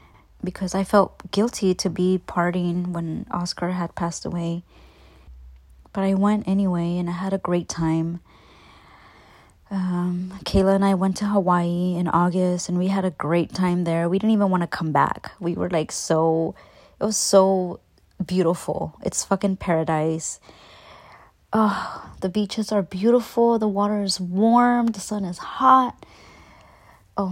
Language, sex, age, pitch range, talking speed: English, female, 20-39, 165-195 Hz, 155 wpm